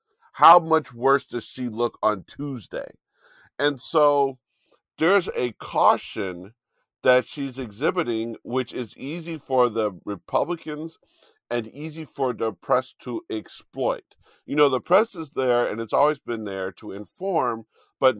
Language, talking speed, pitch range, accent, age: English, 140 wpm, 110-140 Hz, American, 50-69